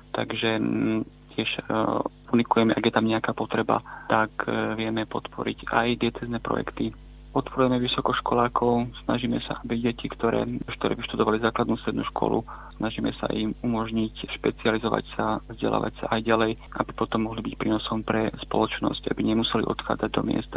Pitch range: 110-115 Hz